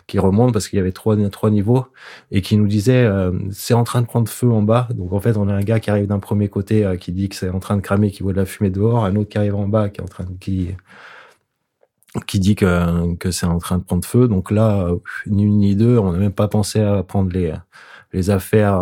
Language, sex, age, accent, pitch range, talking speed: French, male, 20-39, French, 95-105 Hz, 280 wpm